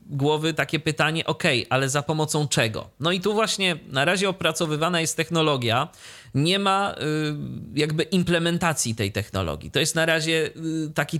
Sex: male